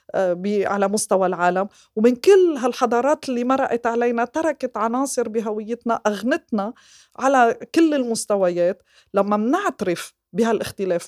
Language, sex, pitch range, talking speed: Arabic, female, 210-290 Hz, 110 wpm